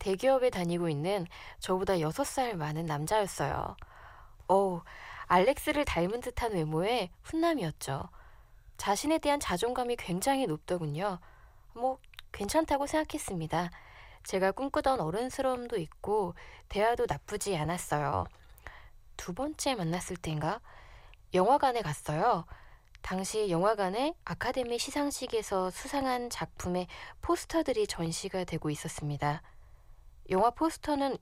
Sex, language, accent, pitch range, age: female, Korean, native, 165-250 Hz, 20-39